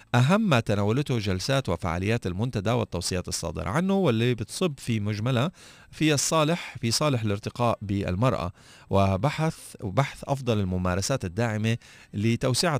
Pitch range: 95-125 Hz